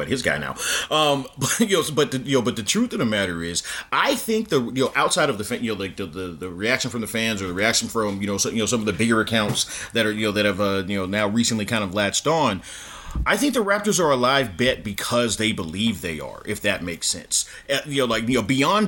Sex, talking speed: male, 250 wpm